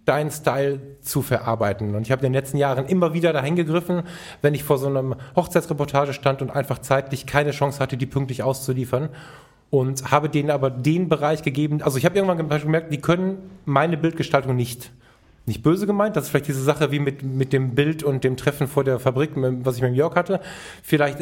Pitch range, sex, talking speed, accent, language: 135-155 Hz, male, 205 wpm, German, German